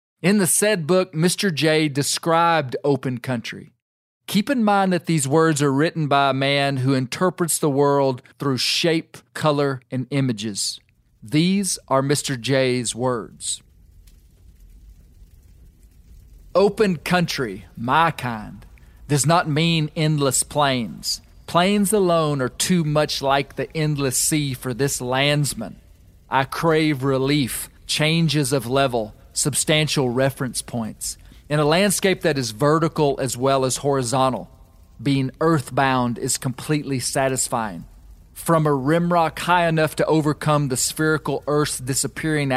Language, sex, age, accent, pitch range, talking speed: English, male, 40-59, American, 125-155 Hz, 130 wpm